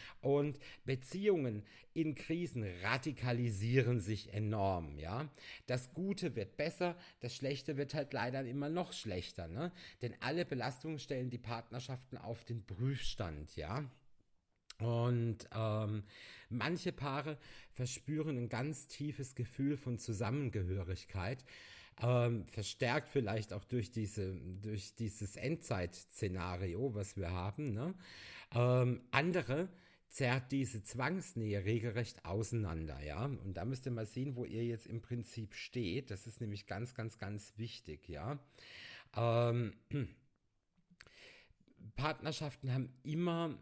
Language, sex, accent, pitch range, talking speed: German, male, German, 105-140 Hz, 120 wpm